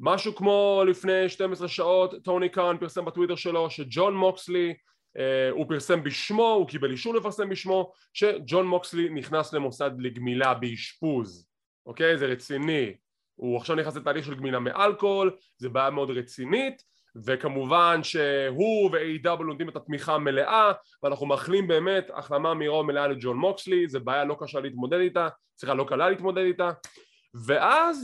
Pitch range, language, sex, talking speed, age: 145-200 Hz, English, male, 135 wpm, 20-39